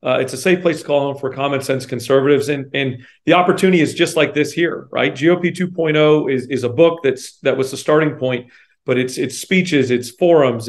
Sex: male